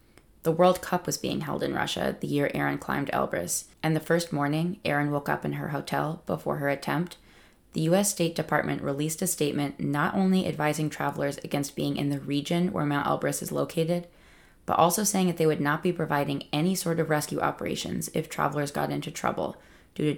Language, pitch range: English, 145-175 Hz